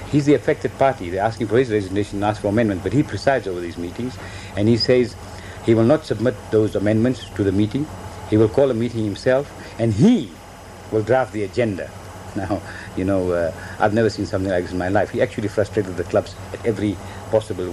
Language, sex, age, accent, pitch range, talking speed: English, male, 60-79, Indian, 95-115 Hz, 215 wpm